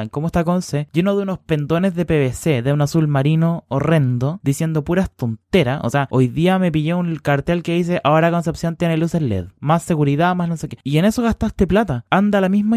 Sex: male